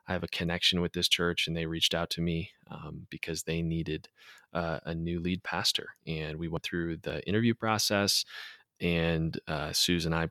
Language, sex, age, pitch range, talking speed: English, male, 20-39, 80-100 Hz, 200 wpm